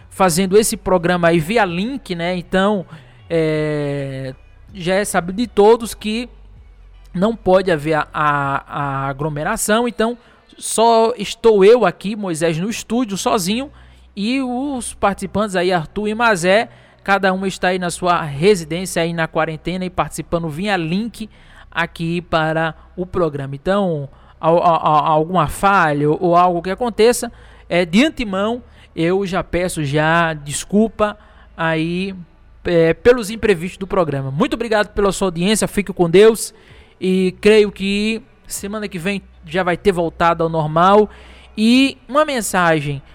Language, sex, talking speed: Portuguese, male, 140 wpm